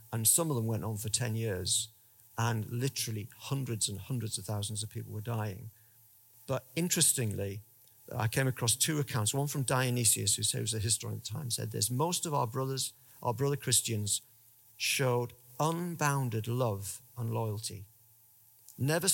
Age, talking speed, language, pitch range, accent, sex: 50-69, 165 wpm, English, 110-130 Hz, British, male